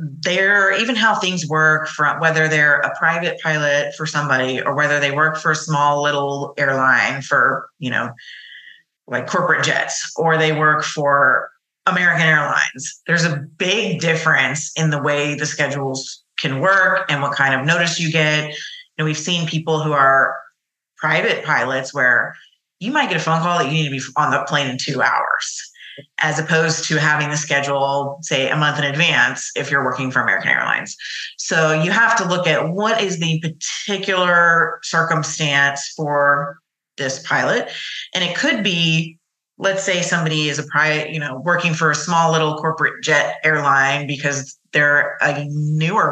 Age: 30-49